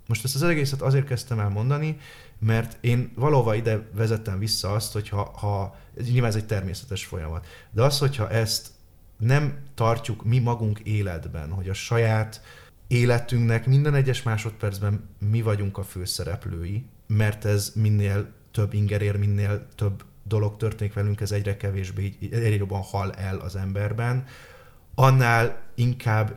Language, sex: Hungarian, male